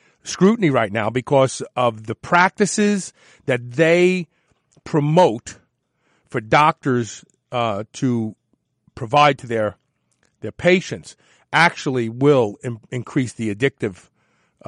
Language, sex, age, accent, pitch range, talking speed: English, male, 50-69, American, 125-175 Hz, 100 wpm